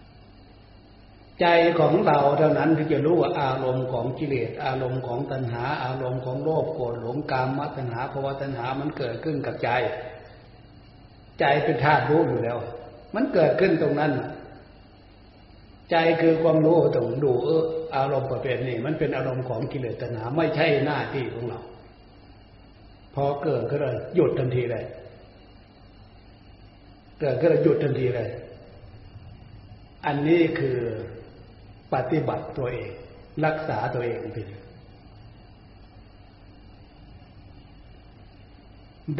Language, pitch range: Thai, 105-150 Hz